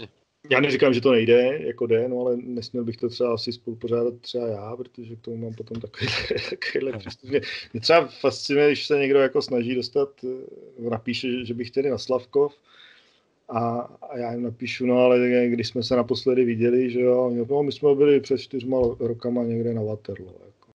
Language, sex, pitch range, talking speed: Czech, male, 120-130 Hz, 180 wpm